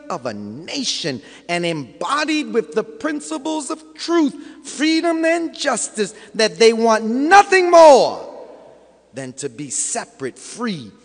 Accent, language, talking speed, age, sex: American, English, 125 wpm, 40-59, male